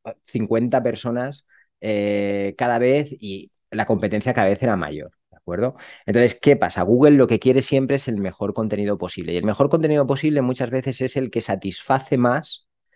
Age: 30-49